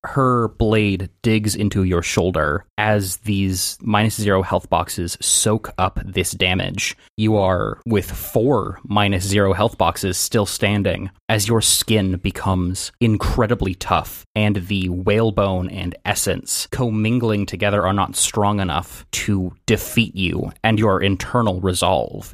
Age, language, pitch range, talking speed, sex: 20-39, English, 90-105 Hz, 130 wpm, male